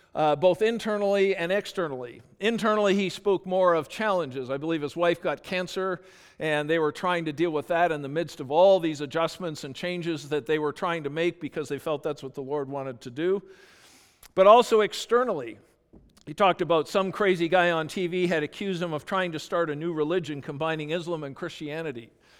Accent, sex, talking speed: American, male, 200 wpm